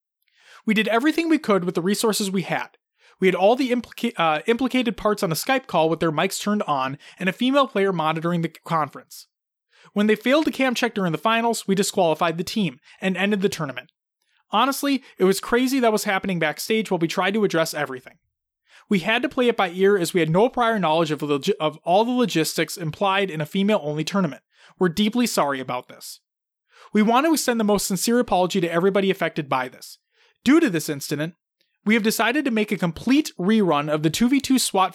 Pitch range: 165-230 Hz